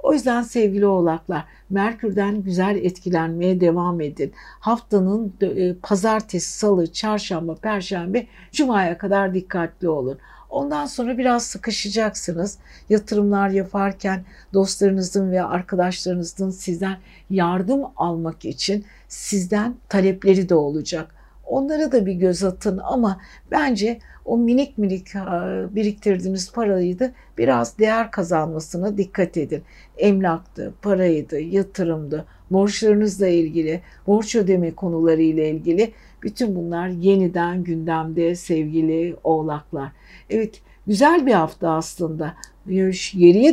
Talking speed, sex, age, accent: 100 wpm, female, 60-79, native